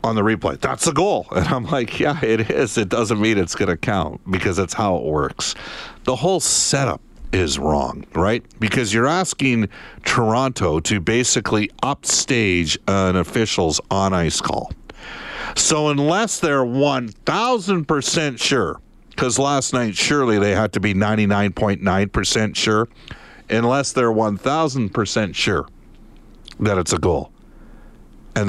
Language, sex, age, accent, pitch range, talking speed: English, male, 50-69, American, 100-130 Hz, 135 wpm